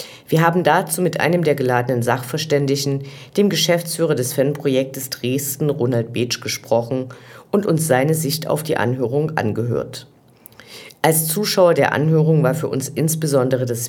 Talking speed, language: 145 wpm, German